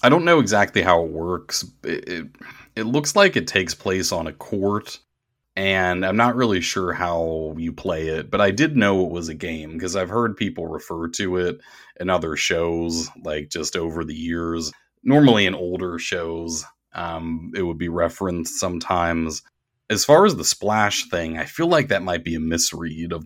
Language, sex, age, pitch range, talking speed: English, male, 30-49, 80-95 Hz, 190 wpm